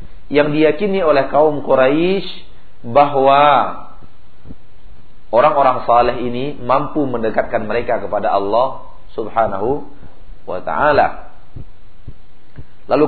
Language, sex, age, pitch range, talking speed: Malay, male, 40-59, 115-150 Hz, 85 wpm